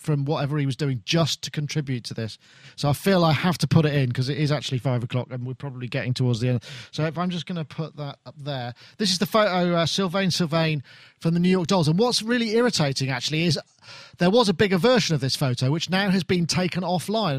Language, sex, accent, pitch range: English, male, British, 140-185 Hz